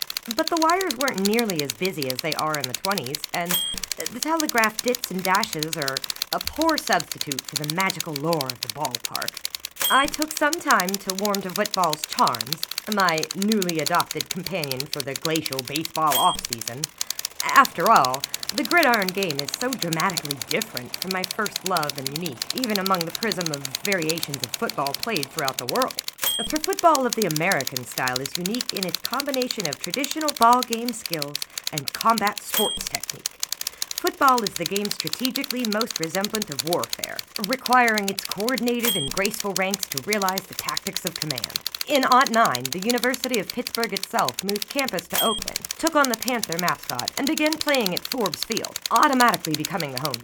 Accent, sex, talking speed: American, female, 170 wpm